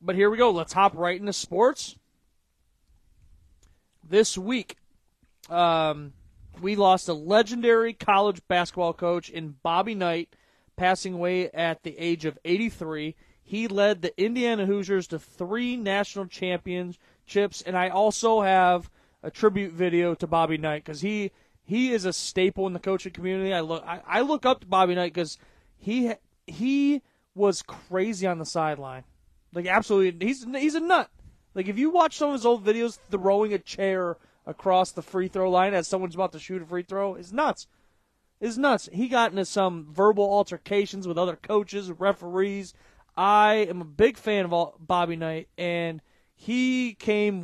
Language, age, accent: English, 30-49, American